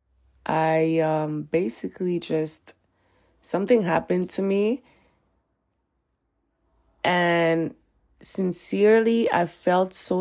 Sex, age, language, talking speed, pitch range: female, 20-39, English, 75 wpm, 155-190 Hz